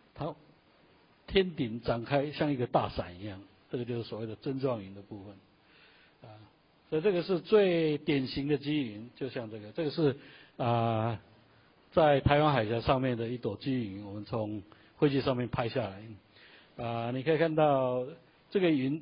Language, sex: Chinese, male